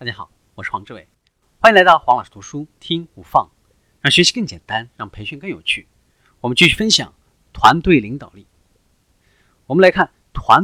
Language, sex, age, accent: Chinese, male, 30-49, native